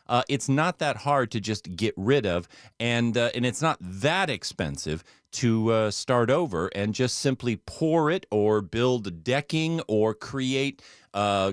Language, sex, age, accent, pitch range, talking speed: English, male, 40-59, American, 105-140 Hz, 165 wpm